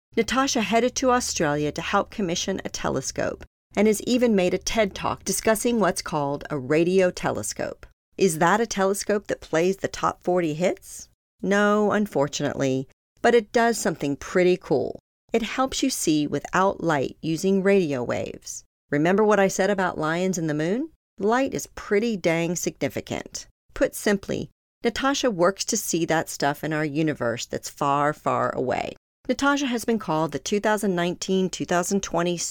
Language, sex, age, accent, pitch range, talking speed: English, female, 50-69, American, 155-215 Hz, 155 wpm